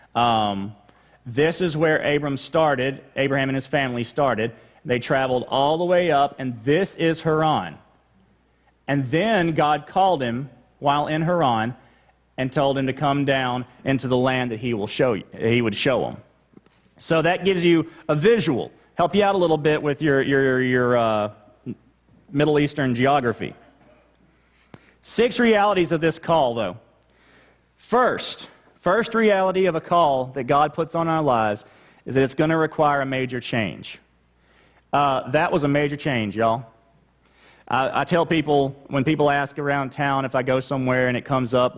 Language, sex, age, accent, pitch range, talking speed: English, male, 40-59, American, 120-150 Hz, 165 wpm